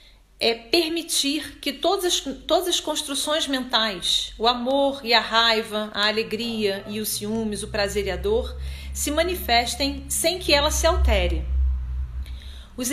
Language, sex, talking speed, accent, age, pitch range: Portuguese, female, 150 wpm, Brazilian, 40-59, 215-295 Hz